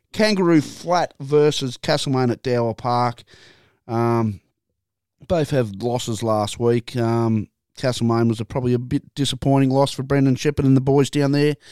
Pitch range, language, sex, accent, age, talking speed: 120-145 Hz, English, male, Australian, 20-39, 155 wpm